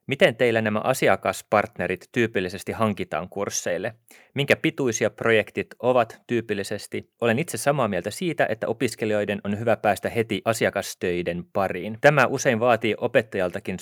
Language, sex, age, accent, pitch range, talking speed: Finnish, male, 30-49, native, 95-115 Hz, 125 wpm